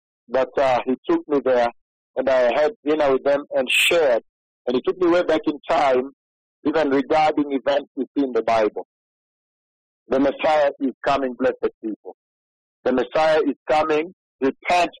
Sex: male